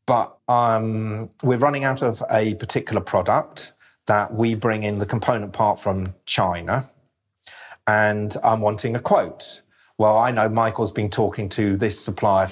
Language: English